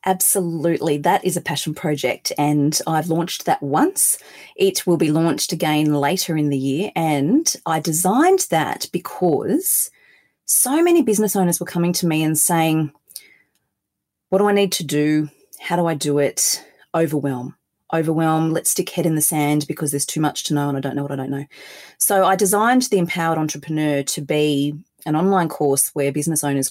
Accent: Australian